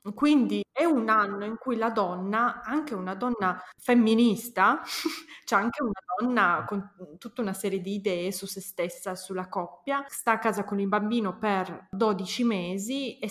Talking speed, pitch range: 165 wpm, 190-230 Hz